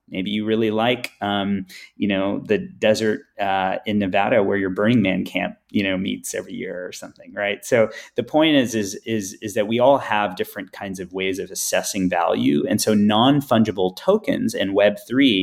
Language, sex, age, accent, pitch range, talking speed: English, male, 30-49, American, 95-125 Hz, 190 wpm